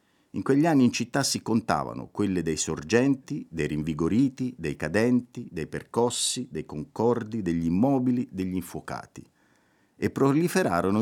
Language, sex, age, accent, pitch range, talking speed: Italian, male, 50-69, native, 80-125 Hz, 130 wpm